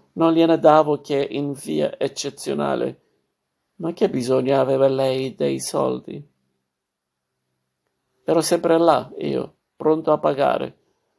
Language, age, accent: Italian, 50-69, native